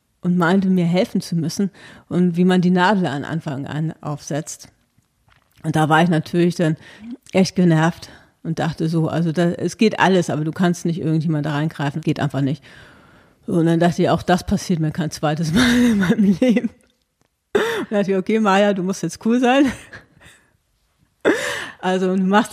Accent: German